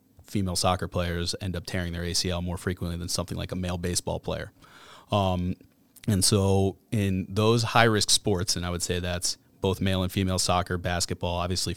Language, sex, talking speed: English, male, 185 wpm